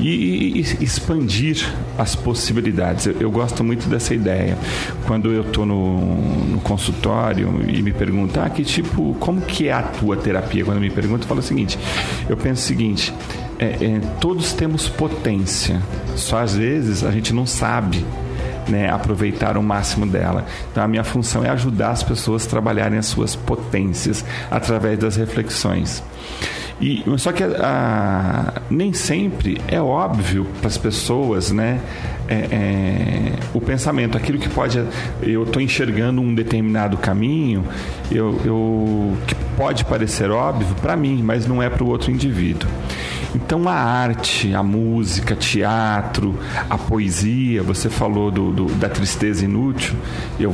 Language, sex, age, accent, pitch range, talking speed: Portuguese, male, 40-59, Brazilian, 100-115 Hz, 155 wpm